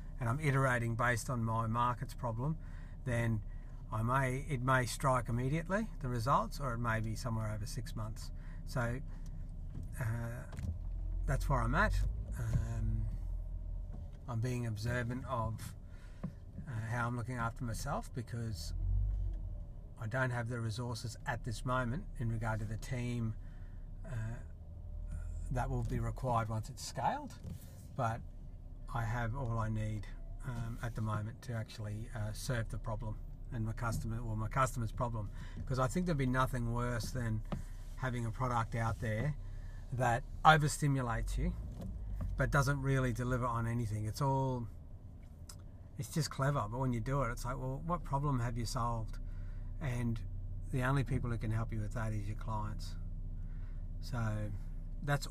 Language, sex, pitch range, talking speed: English, male, 95-125 Hz, 150 wpm